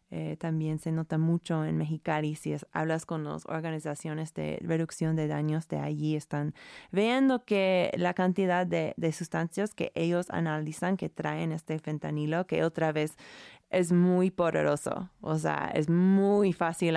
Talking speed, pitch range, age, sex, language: 155 wpm, 155-180 Hz, 20-39, female, Spanish